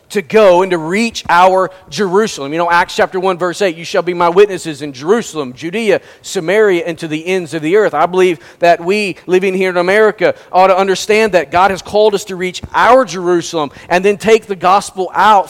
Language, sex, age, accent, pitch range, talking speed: English, male, 40-59, American, 180-220 Hz, 215 wpm